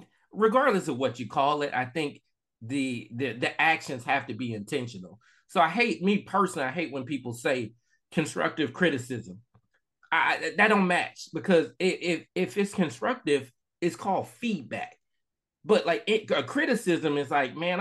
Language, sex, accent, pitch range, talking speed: English, male, American, 140-190 Hz, 160 wpm